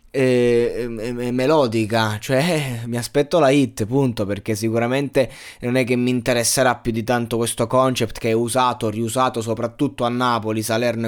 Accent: native